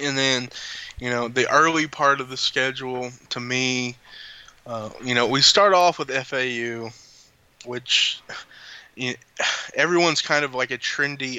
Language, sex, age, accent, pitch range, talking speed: English, male, 20-39, American, 115-135 Hz, 140 wpm